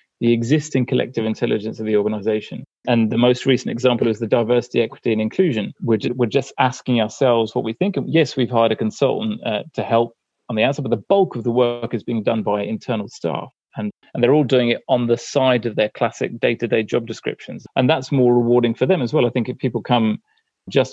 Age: 30-49